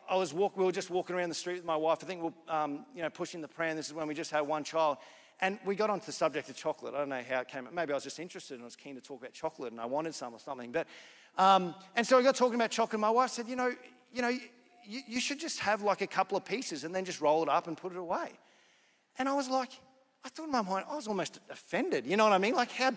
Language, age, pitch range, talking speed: English, 40-59, 180-250 Hz, 315 wpm